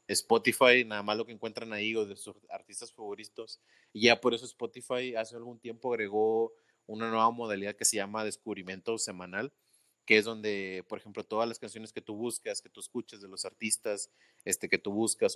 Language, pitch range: Spanish, 100-115 Hz